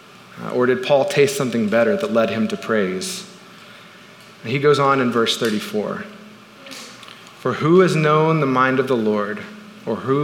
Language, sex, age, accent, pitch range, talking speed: English, male, 40-59, American, 130-200 Hz, 165 wpm